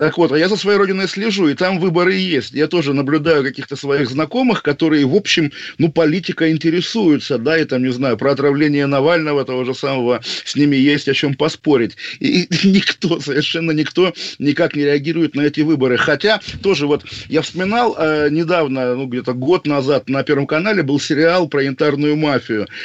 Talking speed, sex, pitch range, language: 185 wpm, male, 140-170 Hz, Russian